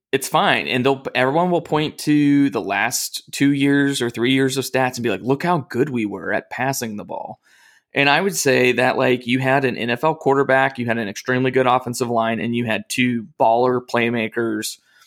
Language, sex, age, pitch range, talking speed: English, male, 20-39, 115-130 Hz, 210 wpm